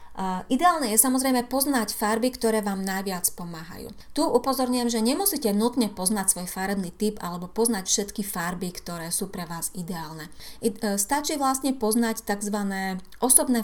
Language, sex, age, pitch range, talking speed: Slovak, female, 30-49, 190-235 Hz, 140 wpm